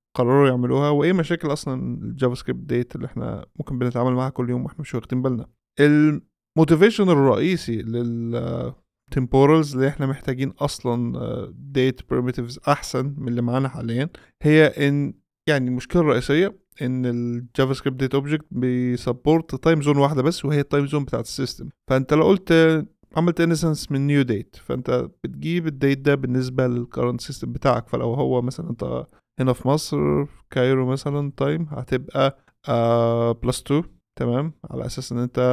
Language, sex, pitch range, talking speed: Arabic, male, 125-155 Hz, 150 wpm